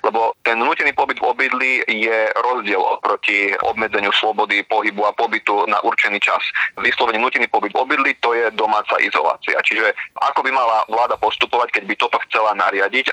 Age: 30-49